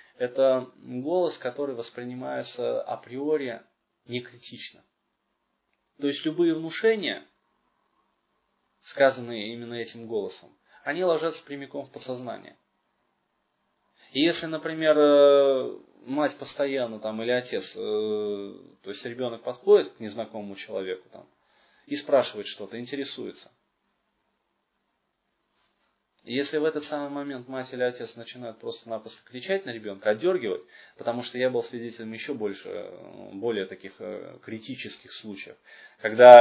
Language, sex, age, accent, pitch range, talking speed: Russian, male, 20-39, native, 115-150 Hz, 105 wpm